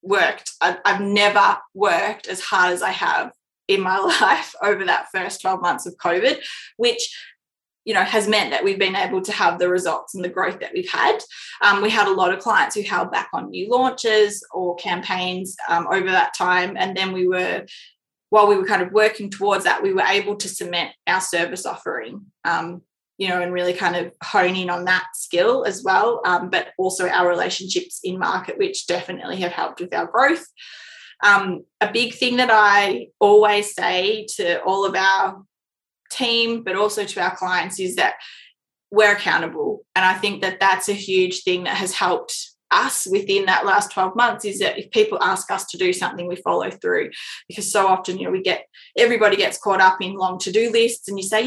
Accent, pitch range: Australian, 185-235 Hz